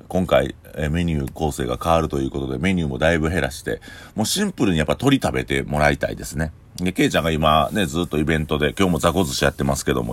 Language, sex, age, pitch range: Japanese, male, 40-59, 70-90 Hz